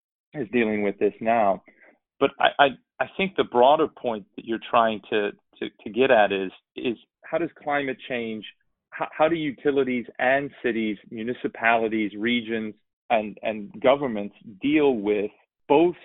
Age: 40-59